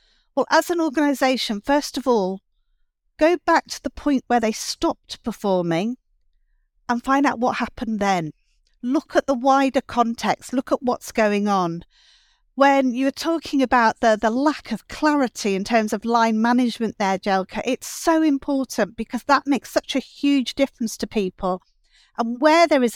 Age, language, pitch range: 50-69, English, 205-270 Hz